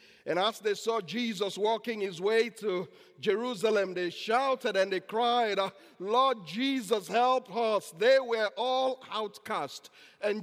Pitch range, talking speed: 130-205 Hz, 140 wpm